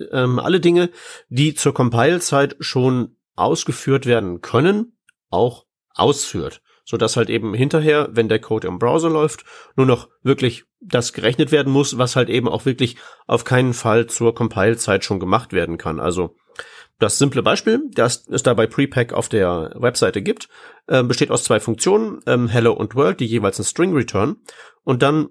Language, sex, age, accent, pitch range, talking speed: German, male, 40-59, German, 115-140 Hz, 165 wpm